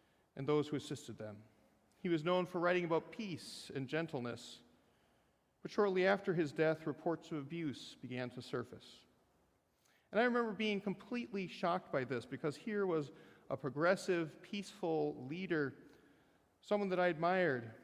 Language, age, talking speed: English, 40-59, 150 wpm